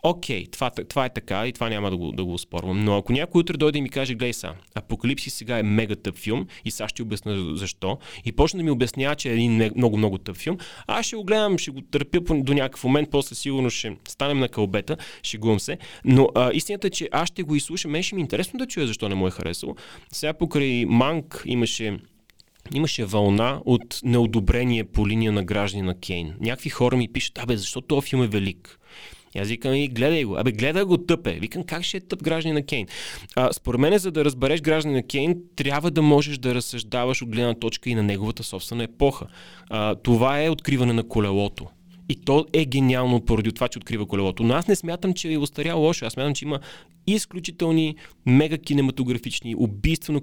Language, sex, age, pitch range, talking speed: Bulgarian, male, 30-49, 110-150 Hz, 215 wpm